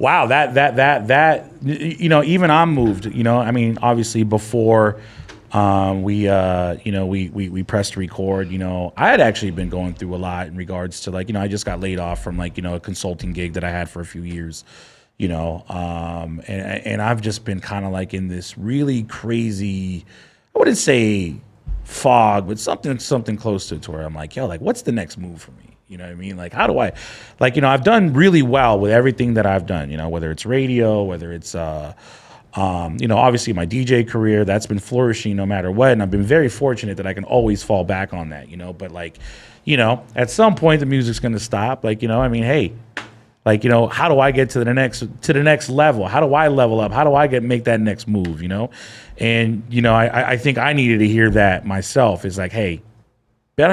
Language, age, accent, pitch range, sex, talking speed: English, 30-49, American, 95-125 Hz, male, 240 wpm